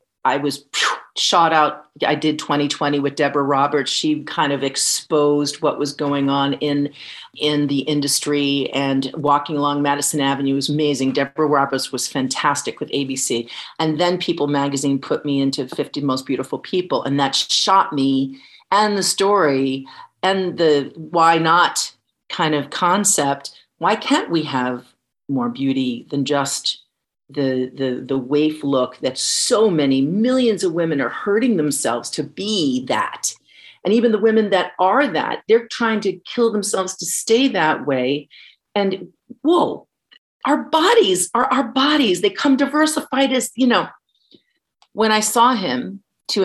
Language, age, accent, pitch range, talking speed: English, 40-59, American, 140-195 Hz, 155 wpm